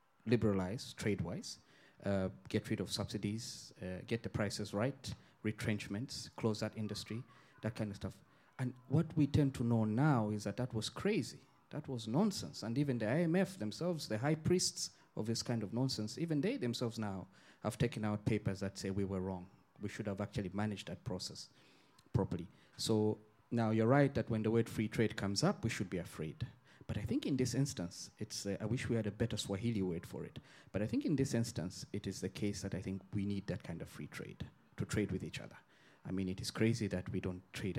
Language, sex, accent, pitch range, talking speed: English, male, South African, 100-125 Hz, 215 wpm